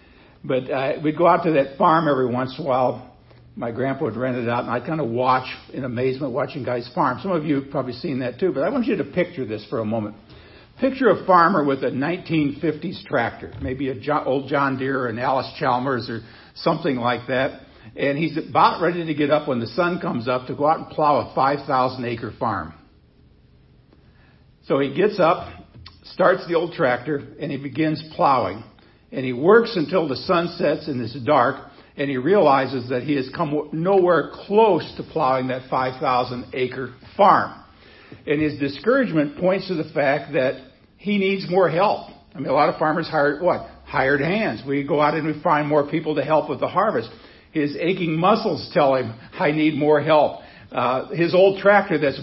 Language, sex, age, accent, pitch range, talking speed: English, male, 60-79, American, 130-165 Hz, 200 wpm